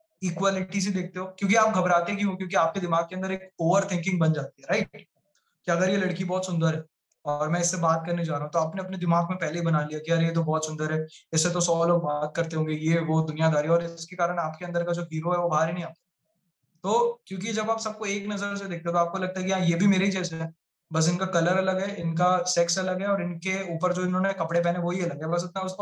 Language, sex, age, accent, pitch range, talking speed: Hindi, male, 20-39, native, 170-200 Hz, 270 wpm